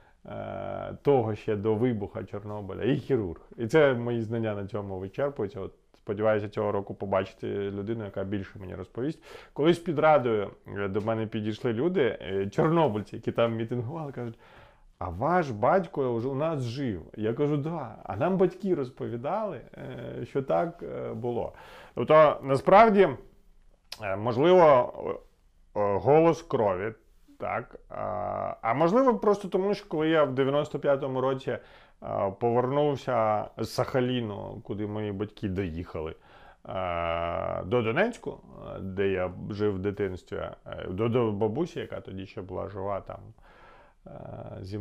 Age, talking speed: 30-49, 125 wpm